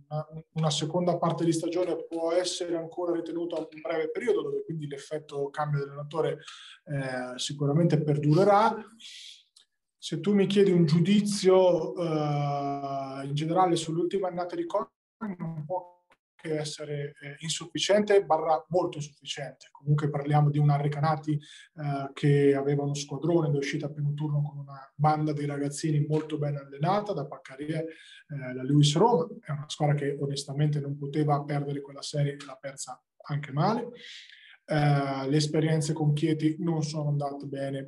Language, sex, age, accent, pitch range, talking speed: Italian, male, 20-39, native, 145-170 Hz, 145 wpm